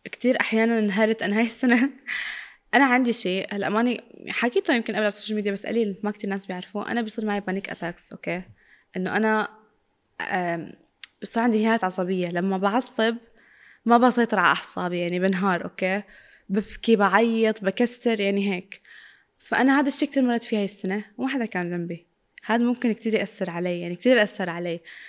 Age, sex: 20-39, female